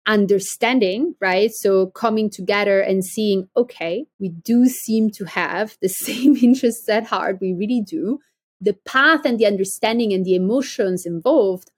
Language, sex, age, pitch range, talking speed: English, female, 30-49, 180-240 Hz, 155 wpm